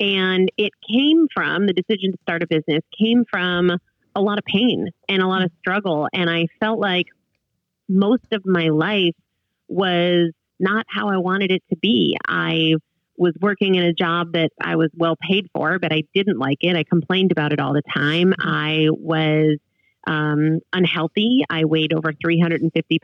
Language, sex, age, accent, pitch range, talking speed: English, female, 30-49, American, 160-205 Hz, 180 wpm